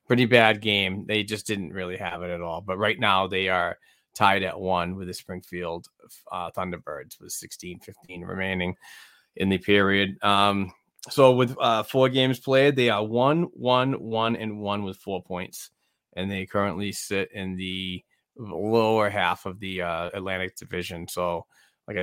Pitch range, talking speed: 95-110 Hz, 165 wpm